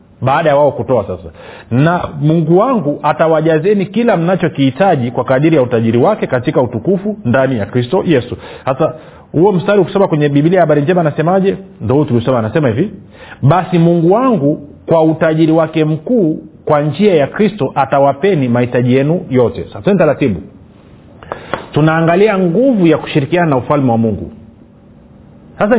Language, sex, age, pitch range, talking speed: Swahili, male, 40-59, 125-180 Hz, 145 wpm